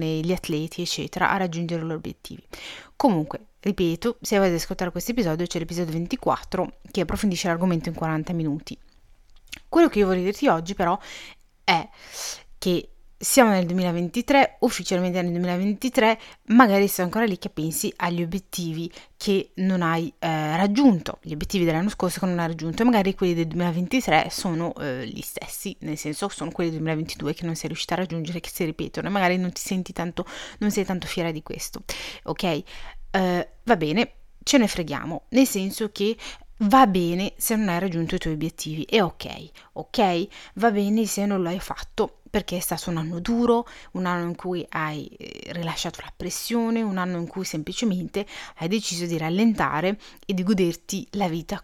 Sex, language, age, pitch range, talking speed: female, Italian, 30-49, 170-200 Hz, 175 wpm